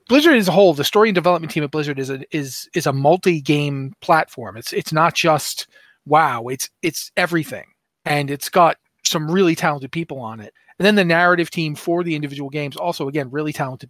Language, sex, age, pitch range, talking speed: English, male, 40-59, 145-180 Hz, 205 wpm